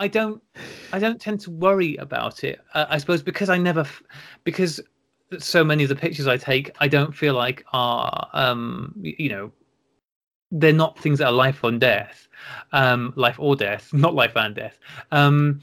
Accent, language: British, English